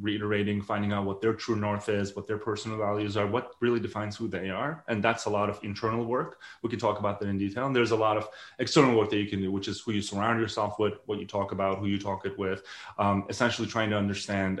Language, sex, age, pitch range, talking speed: English, male, 30-49, 105-125 Hz, 265 wpm